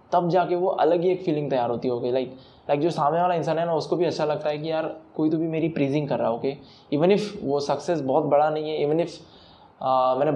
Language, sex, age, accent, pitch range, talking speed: Hindi, male, 10-29, native, 145-175 Hz, 255 wpm